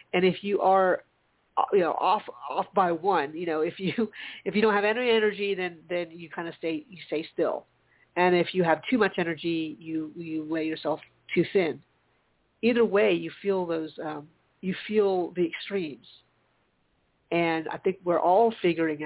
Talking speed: 185 wpm